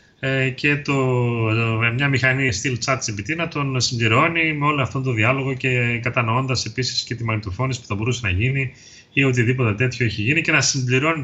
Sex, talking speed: male, 185 wpm